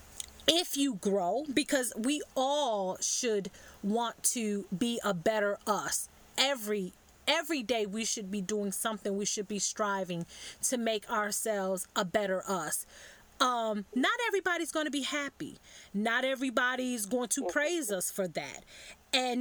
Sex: female